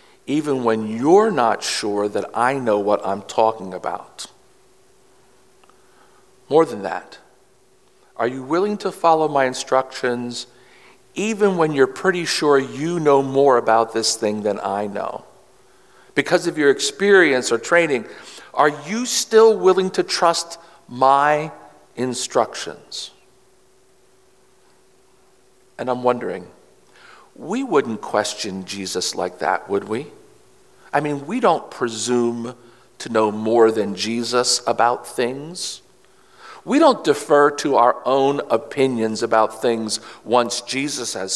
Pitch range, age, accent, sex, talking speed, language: 115-170 Hz, 50-69, American, male, 125 wpm, English